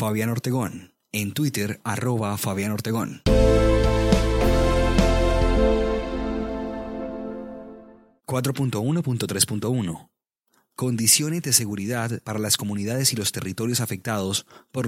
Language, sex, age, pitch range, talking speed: Spanish, male, 30-49, 100-125 Hz, 75 wpm